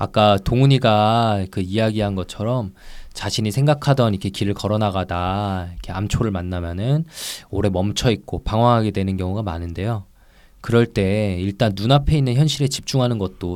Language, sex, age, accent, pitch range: Korean, male, 20-39, native, 95-125 Hz